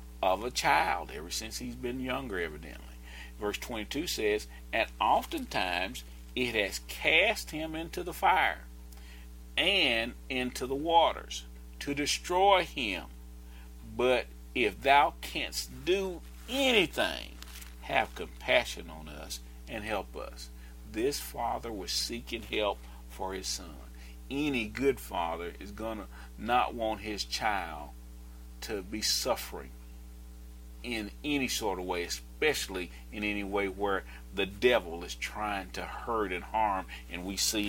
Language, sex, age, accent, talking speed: English, male, 40-59, American, 130 wpm